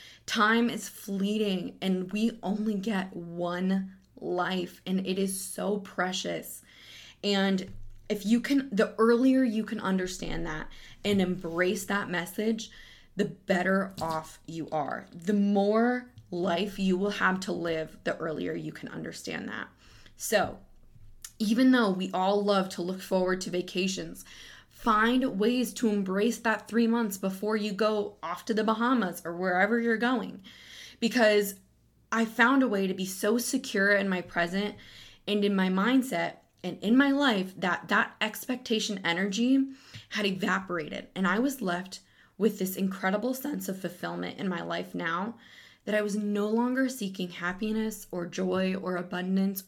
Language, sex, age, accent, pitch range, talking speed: English, female, 20-39, American, 185-220 Hz, 155 wpm